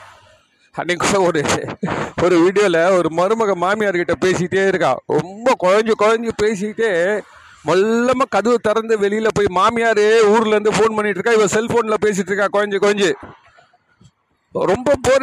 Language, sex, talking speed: Tamil, male, 120 wpm